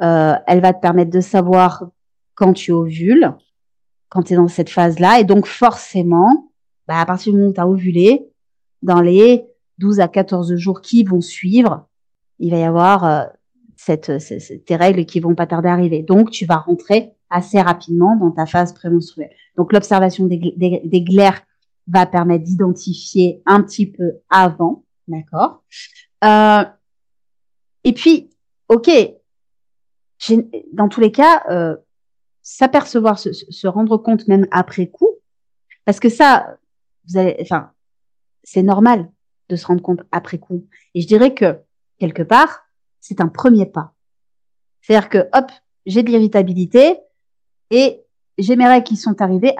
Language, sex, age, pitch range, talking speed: French, female, 30-49, 175-225 Hz, 155 wpm